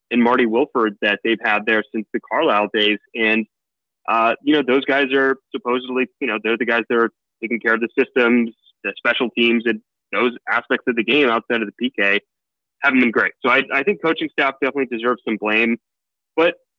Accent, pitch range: American, 115-140 Hz